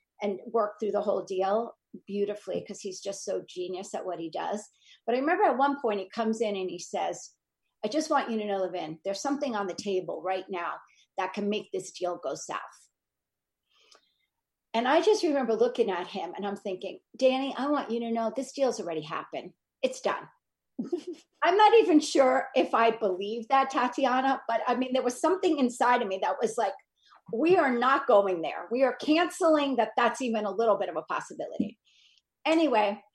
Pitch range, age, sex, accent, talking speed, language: 210-280 Hz, 40-59, female, American, 200 wpm, English